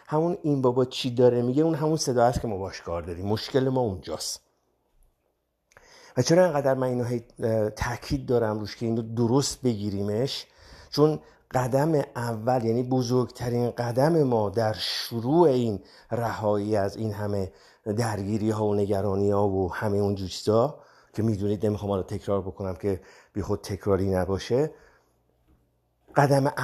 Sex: male